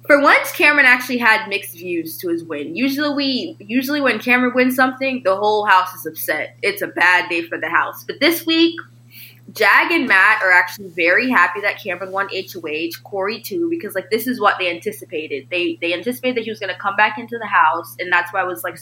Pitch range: 170-235 Hz